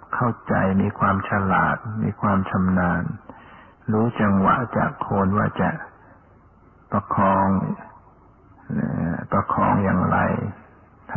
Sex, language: male, Thai